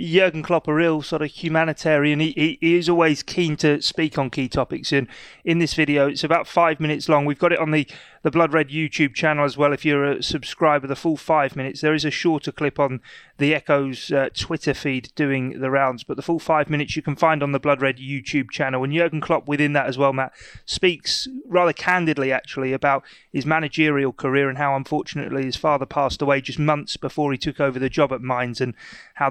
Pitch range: 140-175 Hz